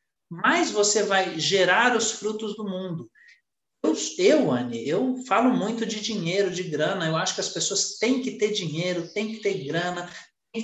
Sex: male